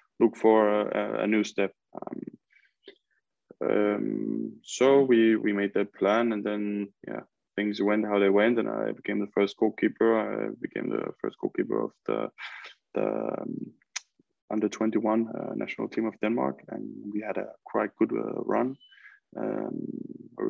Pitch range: 105-115 Hz